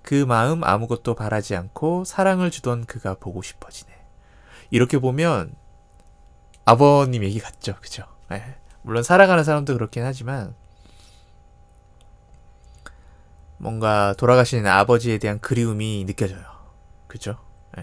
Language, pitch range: Korean, 90-130 Hz